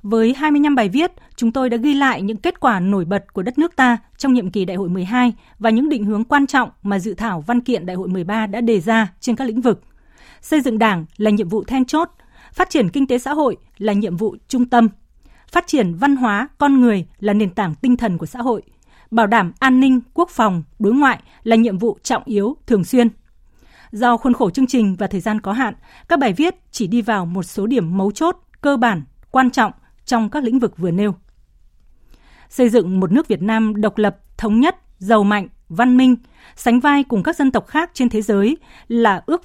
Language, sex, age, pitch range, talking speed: Vietnamese, female, 20-39, 200-255 Hz, 230 wpm